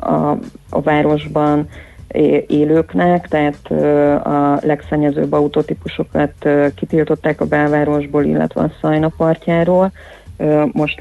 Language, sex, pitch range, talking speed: Hungarian, female, 145-155 Hz, 95 wpm